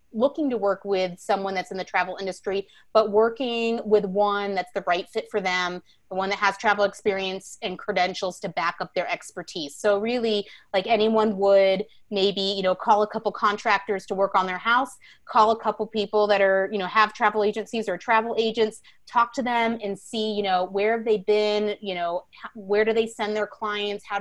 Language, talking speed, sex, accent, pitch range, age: English, 210 wpm, female, American, 185-215 Hz, 30-49